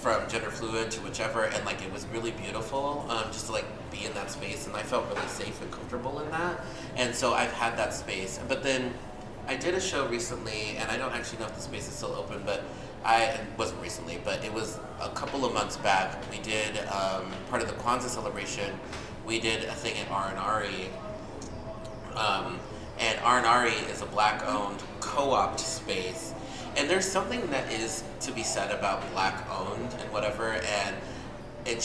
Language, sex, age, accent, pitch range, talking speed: English, male, 30-49, American, 105-120 Hz, 190 wpm